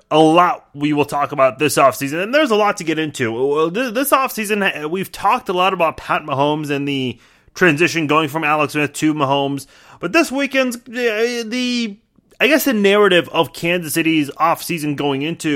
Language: English